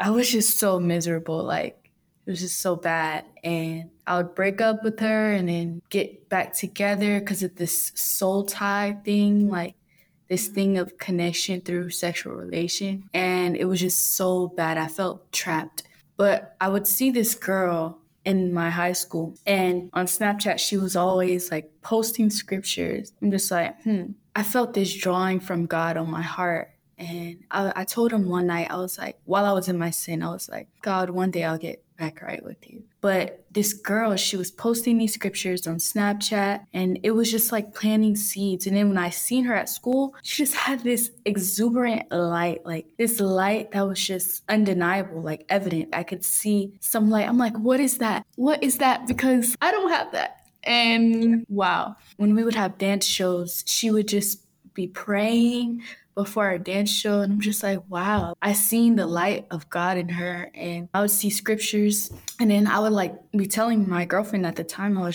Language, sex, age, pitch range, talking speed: English, female, 10-29, 175-215 Hz, 195 wpm